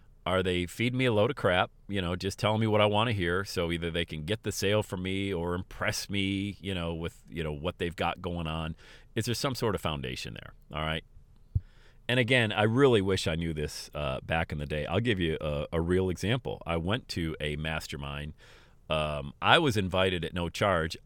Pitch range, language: 80-110 Hz, English